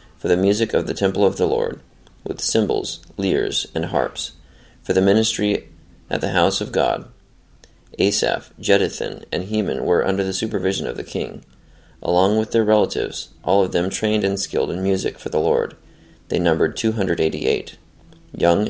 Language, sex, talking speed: English, male, 165 wpm